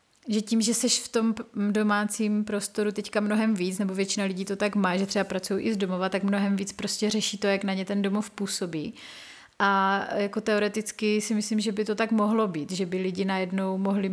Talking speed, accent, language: 215 wpm, native, Czech